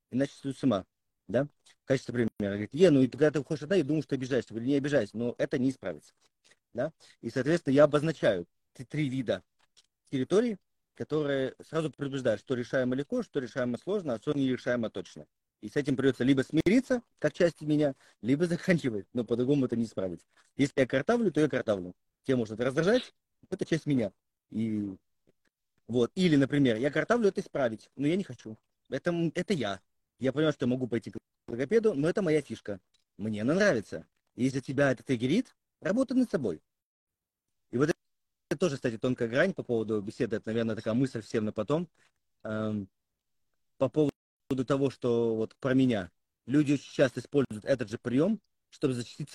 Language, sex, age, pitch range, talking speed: Russian, male, 40-59, 115-150 Hz, 180 wpm